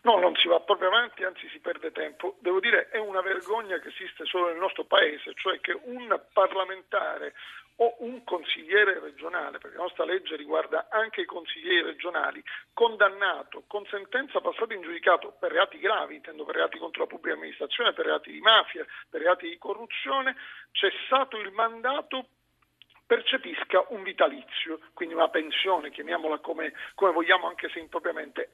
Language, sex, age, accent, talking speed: Italian, male, 40-59, native, 165 wpm